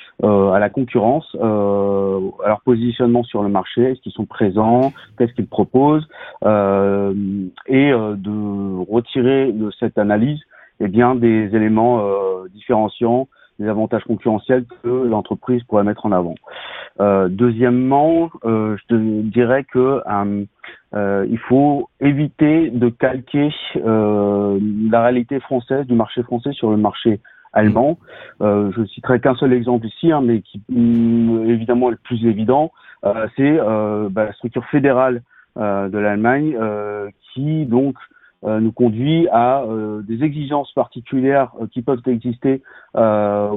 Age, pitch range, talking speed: 40-59, 105-125 Hz, 150 wpm